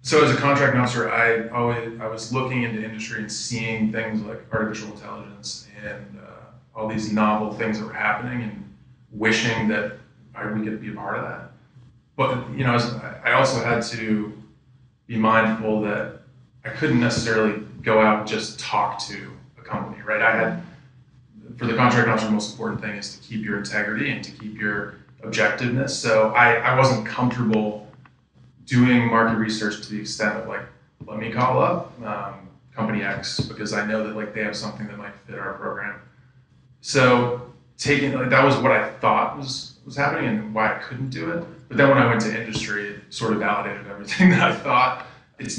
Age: 20-39